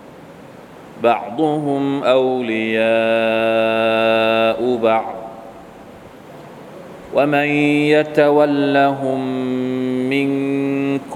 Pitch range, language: 115-140 Hz, Thai